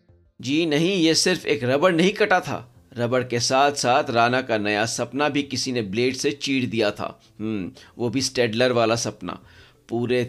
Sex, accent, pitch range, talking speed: male, native, 125-175 Hz, 185 wpm